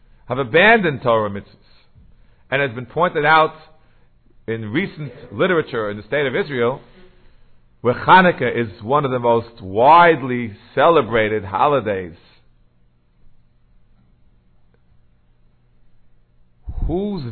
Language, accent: English, American